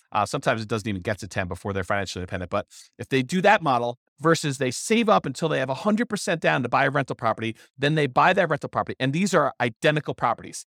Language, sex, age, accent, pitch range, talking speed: English, male, 40-59, American, 115-170 Hz, 240 wpm